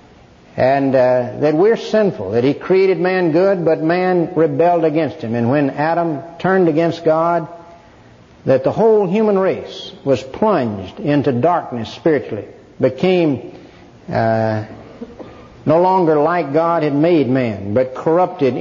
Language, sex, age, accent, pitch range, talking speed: English, male, 60-79, American, 125-180 Hz, 135 wpm